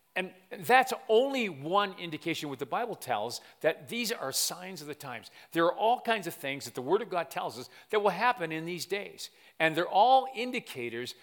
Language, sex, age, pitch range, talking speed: English, male, 50-69, 140-200 Hz, 210 wpm